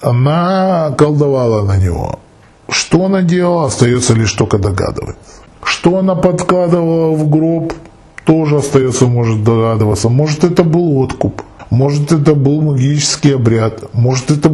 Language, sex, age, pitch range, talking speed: Russian, male, 20-39, 115-150 Hz, 130 wpm